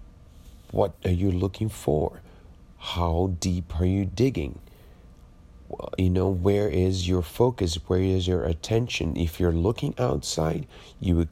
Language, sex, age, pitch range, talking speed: English, male, 40-59, 80-95 Hz, 140 wpm